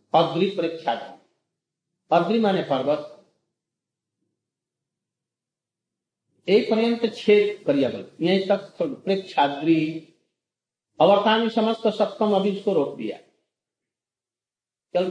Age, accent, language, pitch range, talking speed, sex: 50-69, native, Hindi, 140-200 Hz, 65 wpm, male